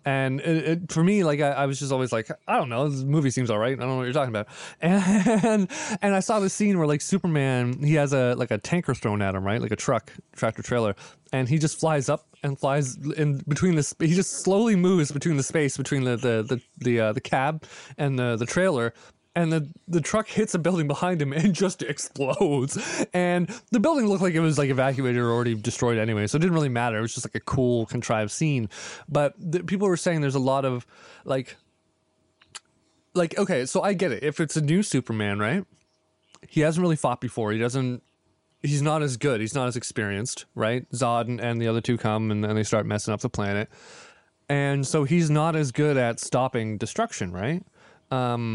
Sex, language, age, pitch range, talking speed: male, English, 20-39, 120-170 Hz, 225 wpm